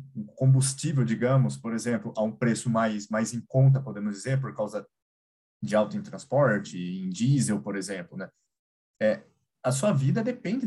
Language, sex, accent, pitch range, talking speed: Portuguese, male, Brazilian, 110-145 Hz, 165 wpm